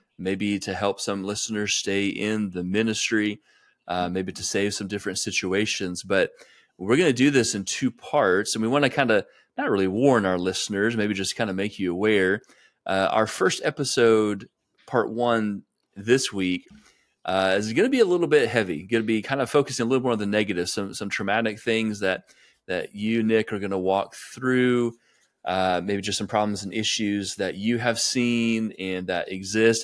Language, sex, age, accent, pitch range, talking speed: English, male, 30-49, American, 95-115 Hz, 200 wpm